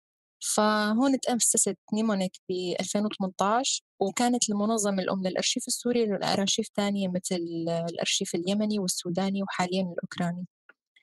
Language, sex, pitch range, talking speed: Arabic, female, 185-220 Hz, 100 wpm